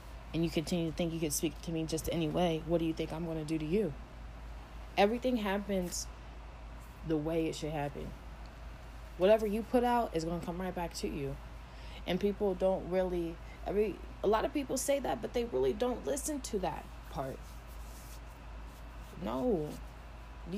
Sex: female